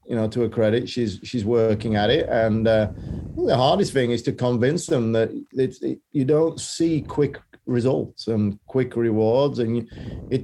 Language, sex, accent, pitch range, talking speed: English, male, British, 110-130 Hz, 170 wpm